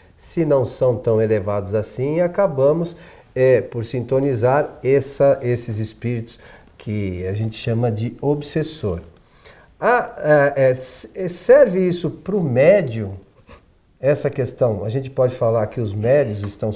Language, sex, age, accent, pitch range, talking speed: Portuguese, male, 50-69, Brazilian, 115-165 Hz, 135 wpm